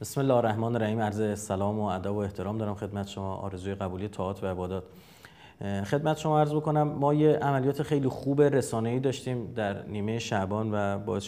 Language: Persian